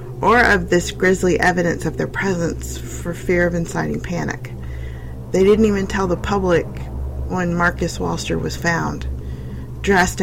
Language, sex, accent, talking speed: English, female, American, 145 wpm